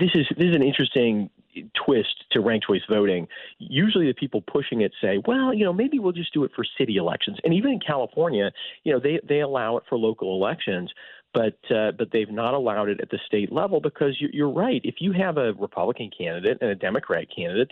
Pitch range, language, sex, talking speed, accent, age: 100-125 Hz, English, male, 225 wpm, American, 40-59